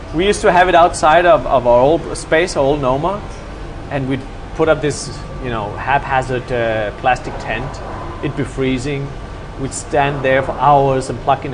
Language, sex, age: English, male, 30-49